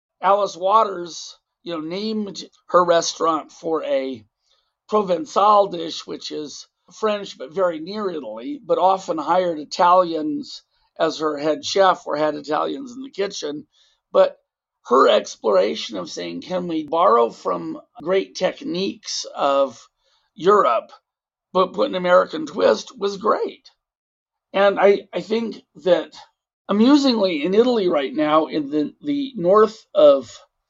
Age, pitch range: 50-69, 160-220 Hz